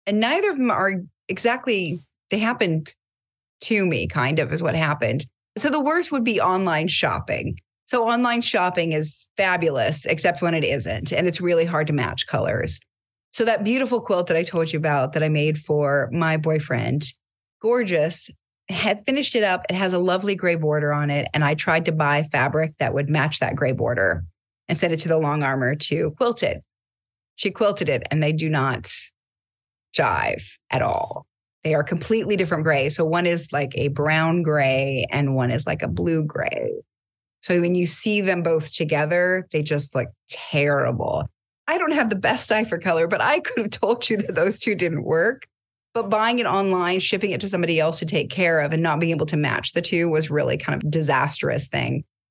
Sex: female